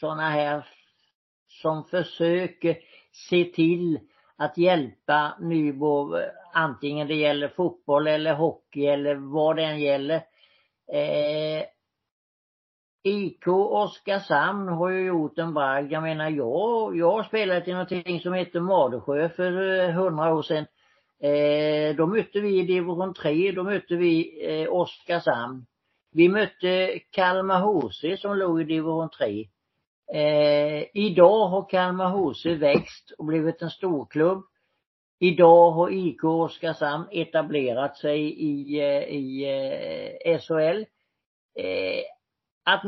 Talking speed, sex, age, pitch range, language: 120 wpm, male, 60-79, 150-185 Hz, Swedish